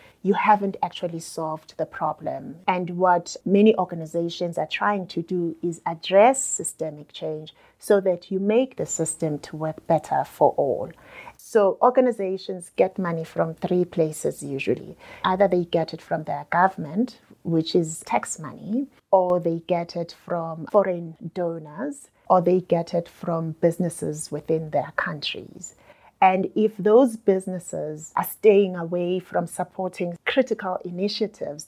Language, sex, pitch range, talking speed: English, female, 165-205 Hz, 140 wpm